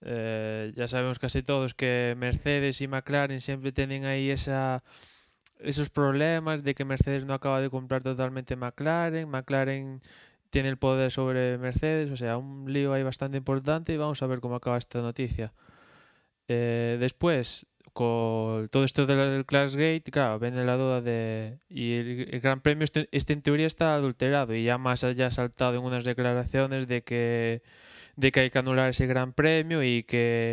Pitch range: 120-140 Hz